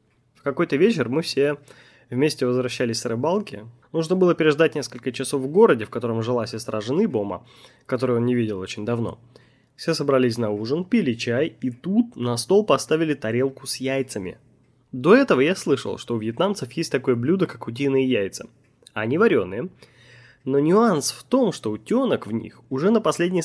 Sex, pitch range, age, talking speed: male, 120-160 Hz, 20-39, 175 wpm